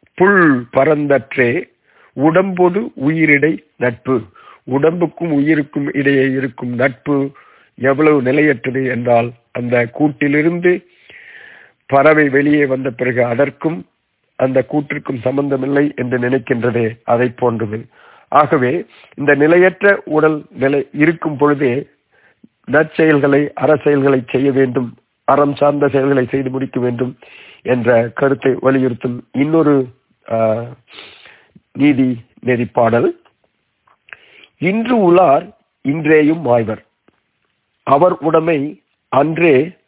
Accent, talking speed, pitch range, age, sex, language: native, 80 wpm, 130-155 Hz, 50-69, male, Tamil